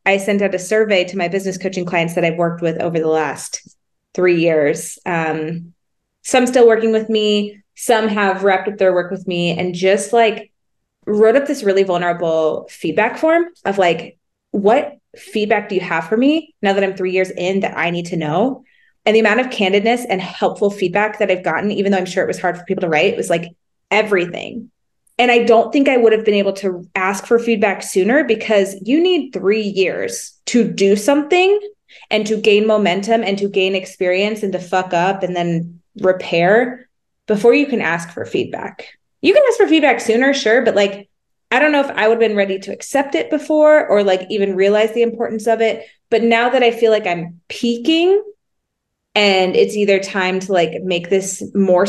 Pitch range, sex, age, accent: 185-235 Hz, female, 20-39, American